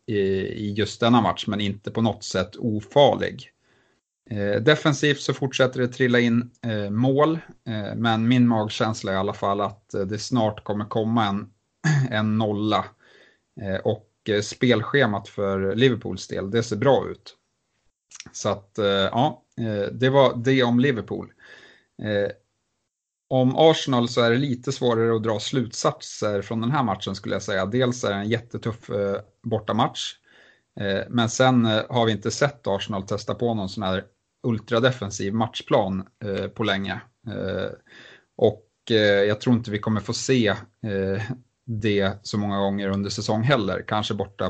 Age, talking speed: 30-49, 150 wpm